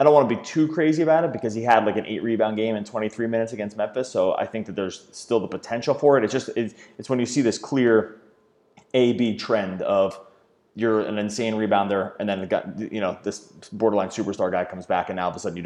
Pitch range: 95-115 Hz